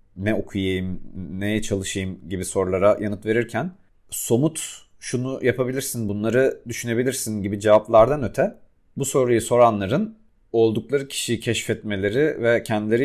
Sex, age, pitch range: male, 40-59, 90-110 Hz